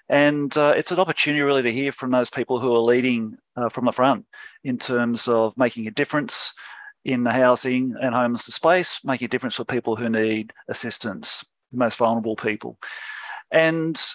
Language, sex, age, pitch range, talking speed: English, male, 40-59, 120-145 Hz, 180 wpm